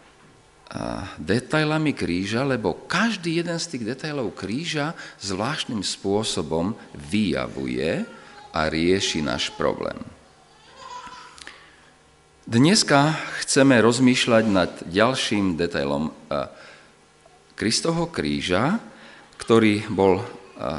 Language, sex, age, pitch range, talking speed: Slovak, male, 40-59, 80-130 Hz, 80 wpm